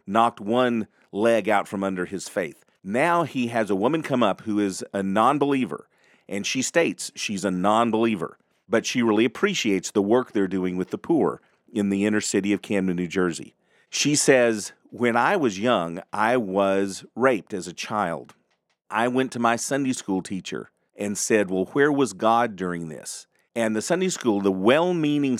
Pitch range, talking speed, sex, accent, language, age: 100-135 Hz, 180 wpm, male, American, English, 40-59